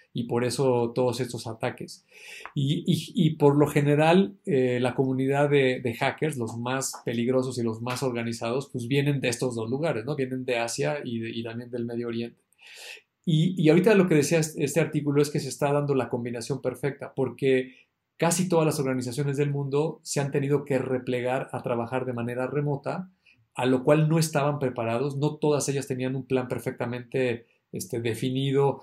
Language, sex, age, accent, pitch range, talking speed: Spanish, male, 40-59, Mexican, 125-155 Hz, 185 wpm